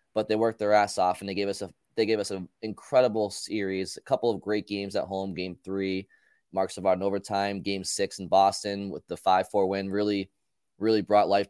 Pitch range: 95-110 Hz